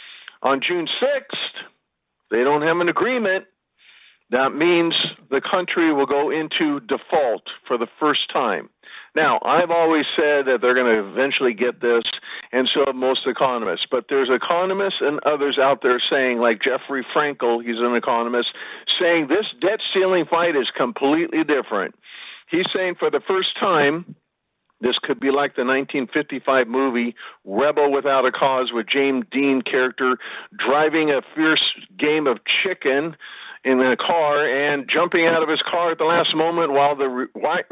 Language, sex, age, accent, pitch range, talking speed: English, male, 50-69, American, 130-170 Hz, 160 wpm